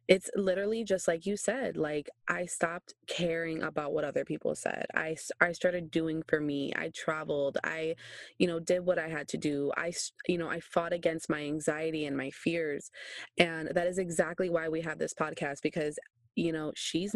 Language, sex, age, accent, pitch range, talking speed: English, female, 20-39, American, 150-175 Hz, 195 wpm